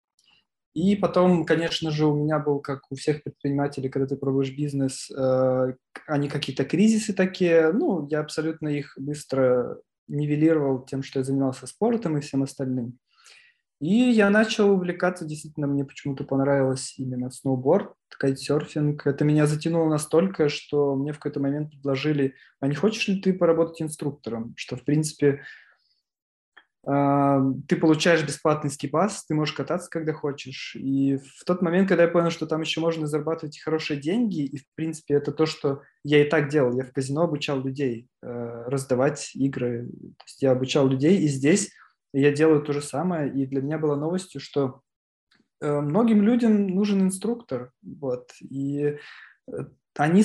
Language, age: Russian, 20-39